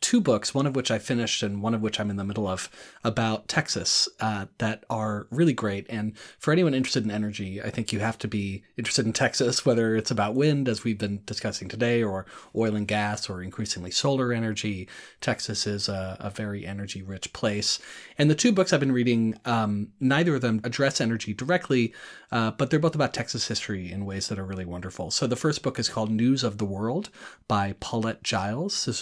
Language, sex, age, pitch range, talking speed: English, male, 30-49, 100-125 Hz, 215 wpm